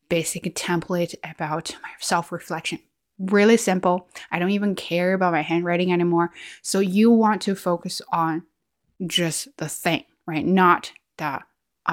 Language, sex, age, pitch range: Chinese, female, 20-39, 170-220 Hz